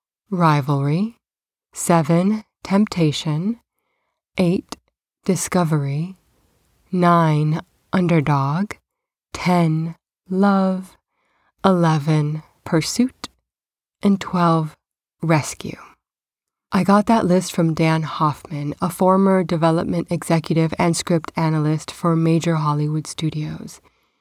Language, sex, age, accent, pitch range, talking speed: English, female, 20-39, American, 155-190 Hz, 80 wpm